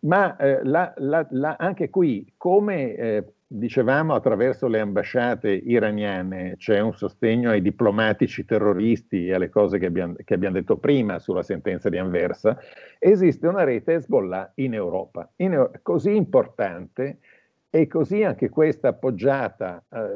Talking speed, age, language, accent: 125 wpm, 50-69, Italian, native